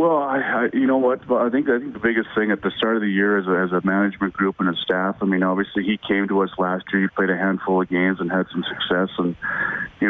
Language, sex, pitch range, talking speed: English, male, 90-100 Hz, 295 wpm